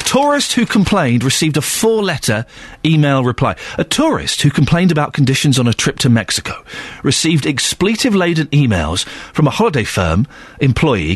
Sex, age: male, 40-59